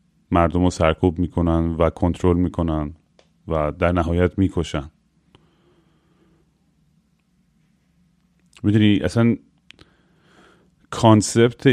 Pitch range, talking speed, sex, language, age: 95-125 Hz, 70 wpm, male, Persian, 30-49